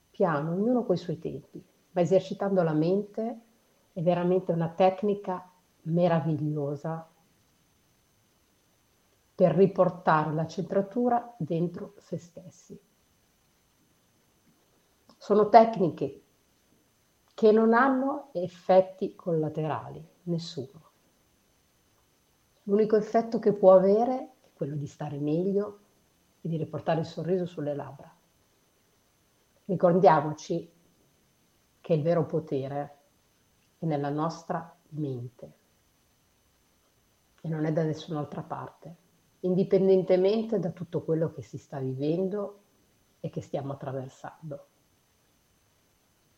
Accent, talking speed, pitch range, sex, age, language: native, 95 wpm, 155-195 Hz, female, 50-69, Italian